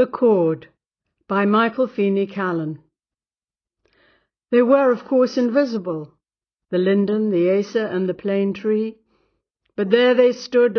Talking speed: 130 wpm